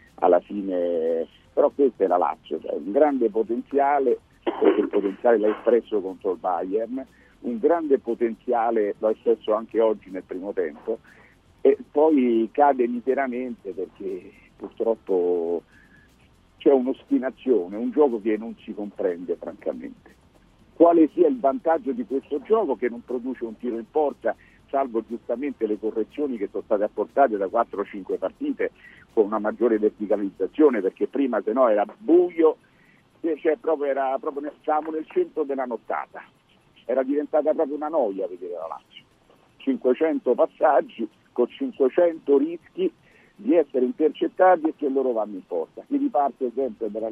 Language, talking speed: Italian, 145 wpm